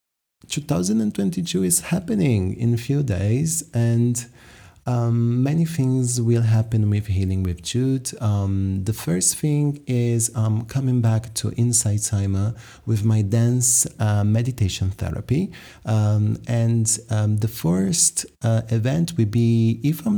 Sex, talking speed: male, 135 wpm